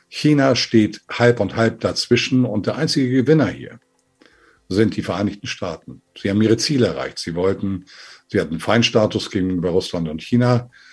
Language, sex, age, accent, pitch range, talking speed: German, male, 50-69, German, 100-120 Hz, 160 wpm